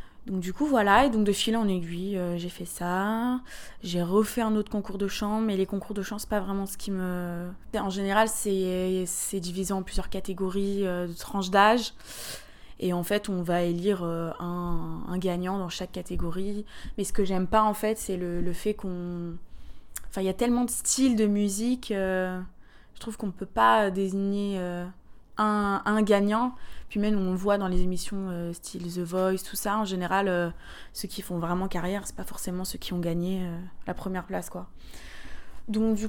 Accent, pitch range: French, 180-205 Hz